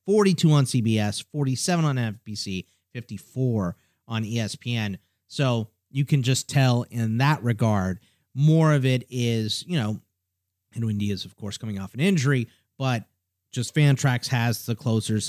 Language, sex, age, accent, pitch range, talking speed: English, male, 30-49, American, 110-140 Hz, 150 wpm